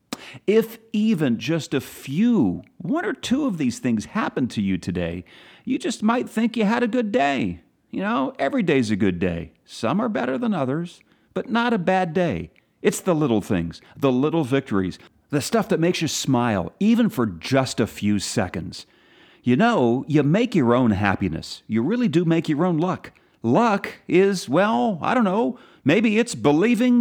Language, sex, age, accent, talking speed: English, male, 40-59, American, 185 wpm